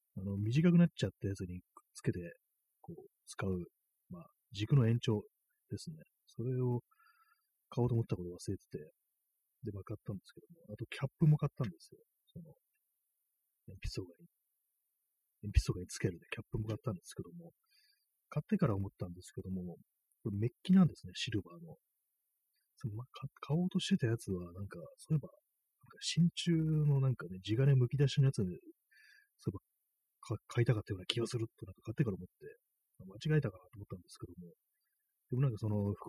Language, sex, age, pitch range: Japanese, male, 40-59, 100-165 Hz